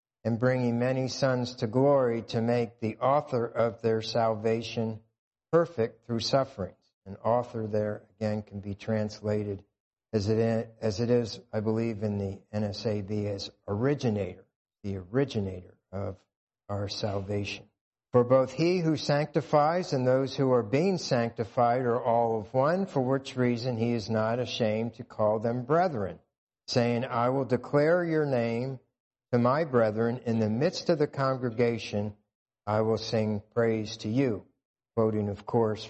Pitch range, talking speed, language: 105-125 Hz, 145 wpm, English